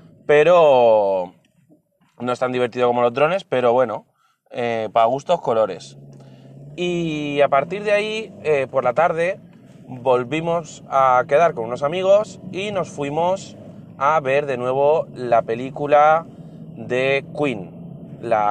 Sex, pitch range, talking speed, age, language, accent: male, 120-160 Hz, 135 wpm, 30-49, Spanish, Spanish